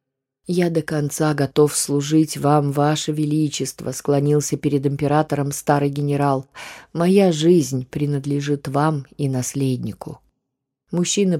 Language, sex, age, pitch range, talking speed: Russian, female, 20-39, 140-160 Hz, 105 wpm